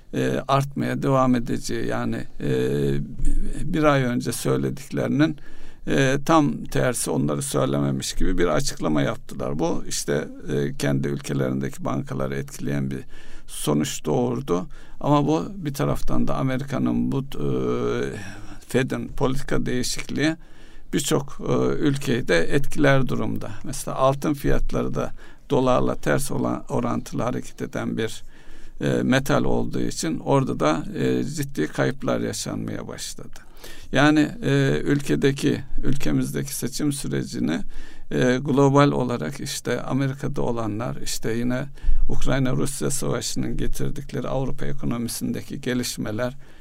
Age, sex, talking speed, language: 60-79, male, 105 wpm, Turkish